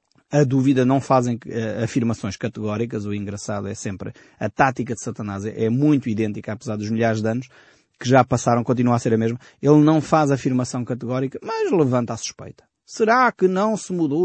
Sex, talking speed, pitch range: male, 190 wpm, 110-145 Hz